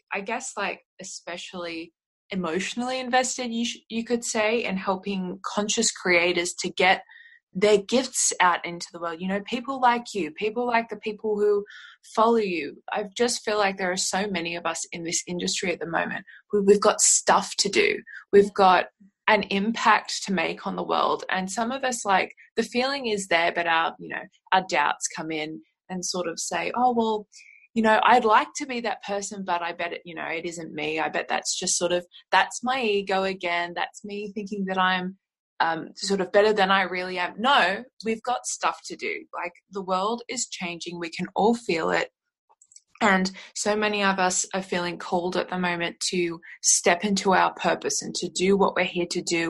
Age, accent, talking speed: 20-39, Australian, 205 wpm